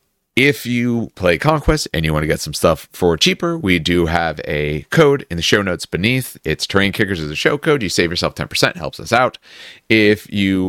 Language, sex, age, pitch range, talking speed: English, male, 30-49, 85-115 Hz, 220 wpm